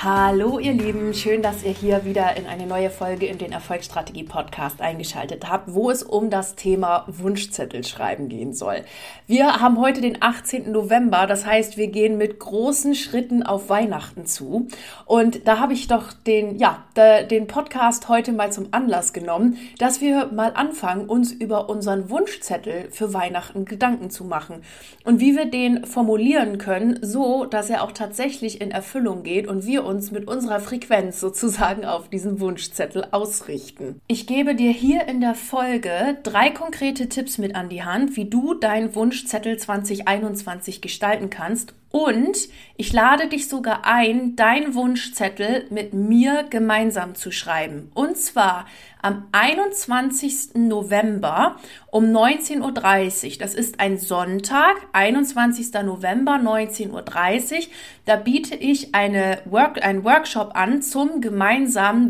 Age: 30-49